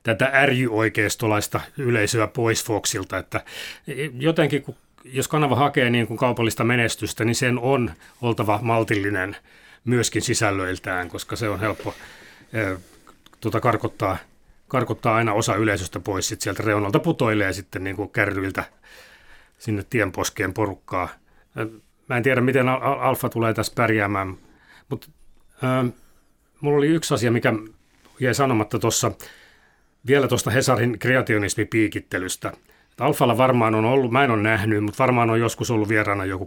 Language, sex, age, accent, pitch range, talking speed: Finnish, male, 30-49, native, 105-130 Hz, 130 wpm